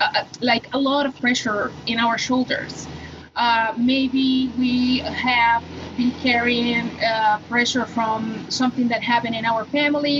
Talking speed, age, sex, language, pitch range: 140 wpm, 30-49, female, English, 220-255 Hz